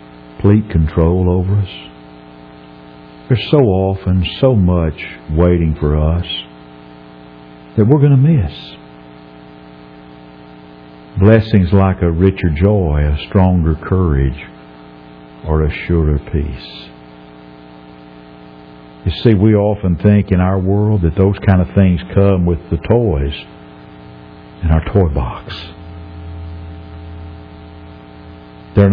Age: 60-79